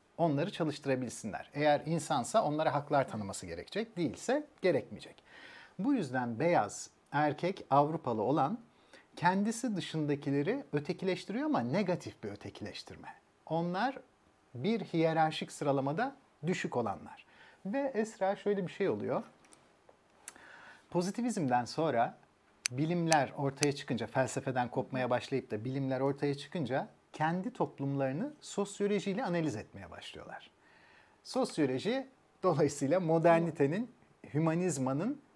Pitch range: 140-195 Hz